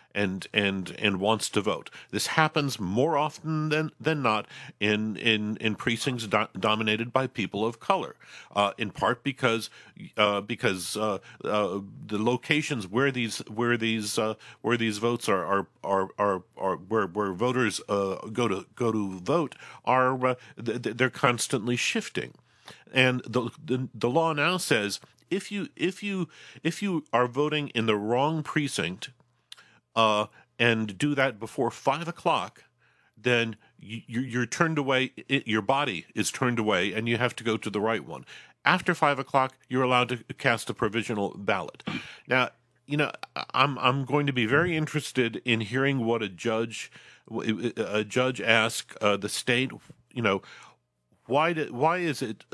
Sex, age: male, 50-69